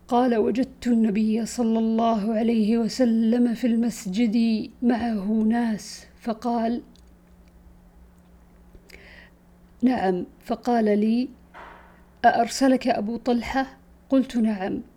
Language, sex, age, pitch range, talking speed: Arabic, female, 50-69, 210-245 Hz, 80 wpm